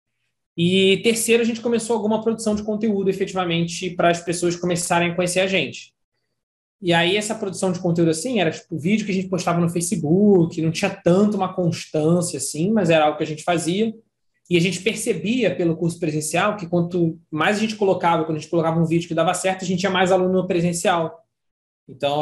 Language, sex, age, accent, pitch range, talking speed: Portuguese, male, 20-39, Brazilian, 160-195 Hz, 215 wpm